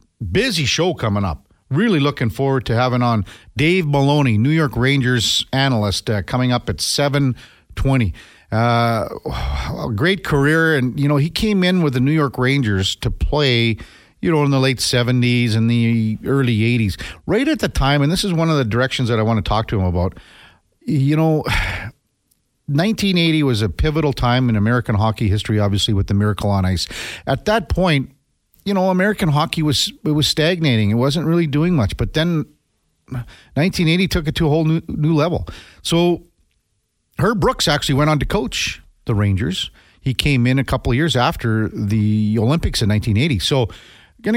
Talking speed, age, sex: 180 wpm, 50-69, male